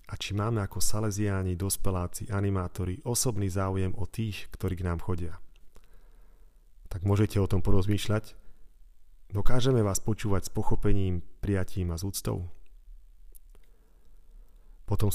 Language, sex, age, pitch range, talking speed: Slovak, male, 40-59, 90-105 Hz, 115 wpm